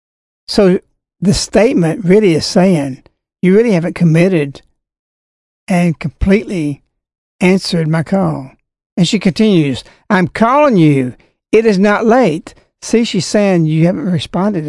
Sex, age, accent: male, 60-79, American